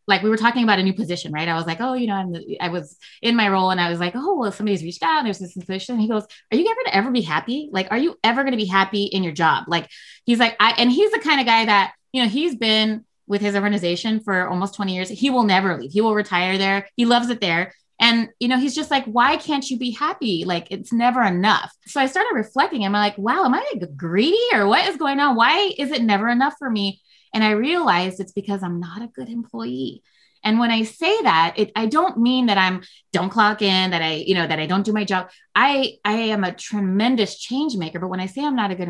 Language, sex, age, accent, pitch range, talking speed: English, female, 20-39, American, 185-240 Hz, 270 wpm